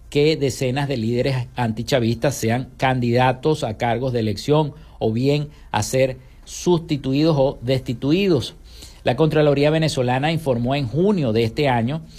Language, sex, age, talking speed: Spanish, male, 50-69, 135 wpm